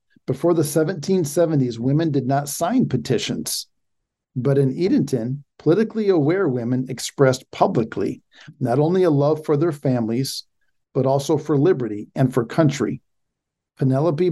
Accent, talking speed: American, 130 wpm